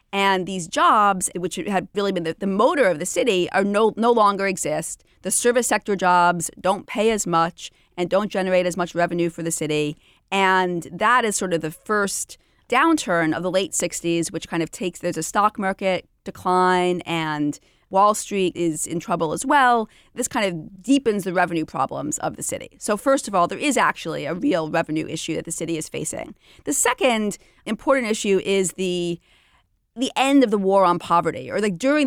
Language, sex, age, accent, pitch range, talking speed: English, female, 30-49, American, 175-220 Hz, 195 wpm